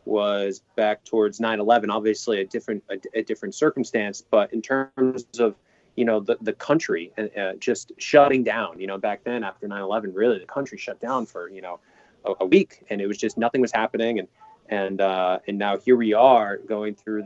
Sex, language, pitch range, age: male, English, 105-130 Hz, 20-39